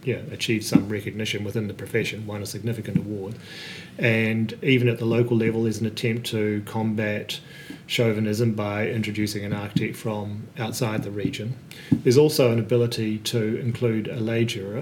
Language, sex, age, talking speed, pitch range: English, male, 40-59, 160 wpm, 105-120 Hz